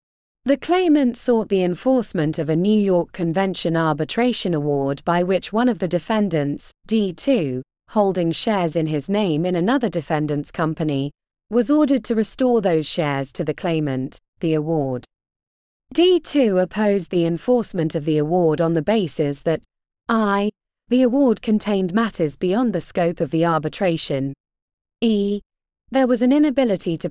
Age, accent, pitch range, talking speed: 20-39, British, 155-220 Hz, 150 wpm